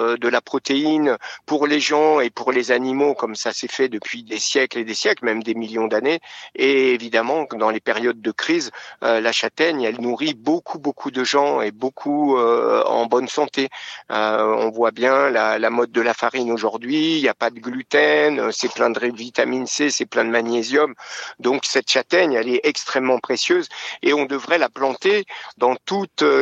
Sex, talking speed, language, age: male, 195 wpm, French, 50-69